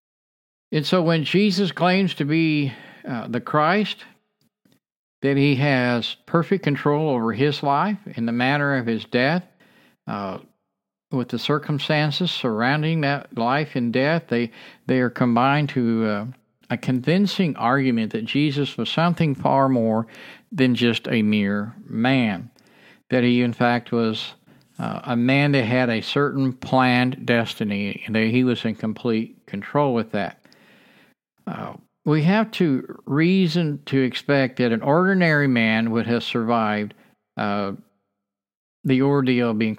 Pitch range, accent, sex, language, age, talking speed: 115-150 Hz, American, male, English, 50-69, 145 wpm